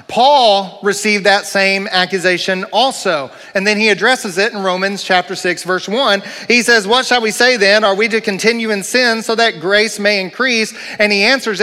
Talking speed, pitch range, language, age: 195 wpm, 185-230 Hz, English, 40-59